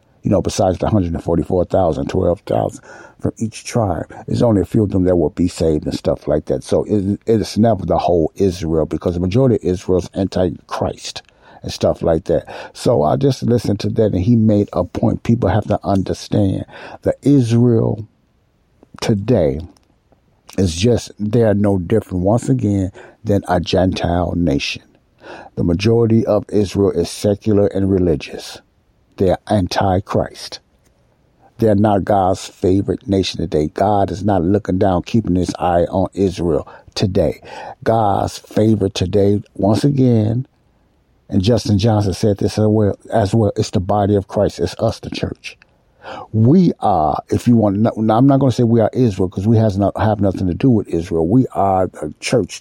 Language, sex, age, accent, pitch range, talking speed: English, male, 60-79, American, 95-110 Hz, 175 wpm